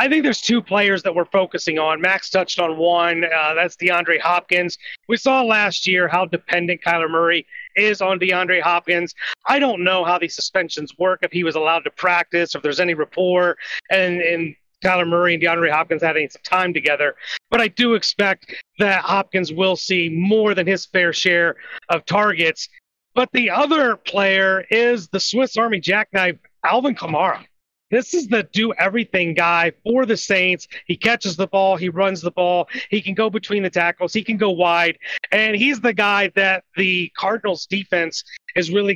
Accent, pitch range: American, 175-215 Hz